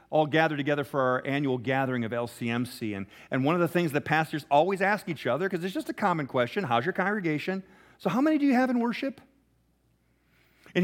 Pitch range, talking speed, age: 135-195 Hz, 215 wpm, 40-59